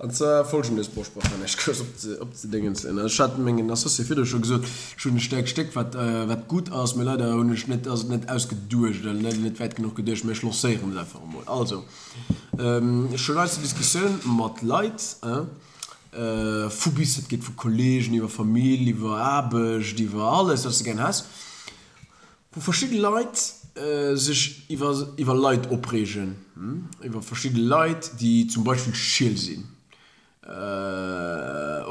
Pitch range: 115-155 Hz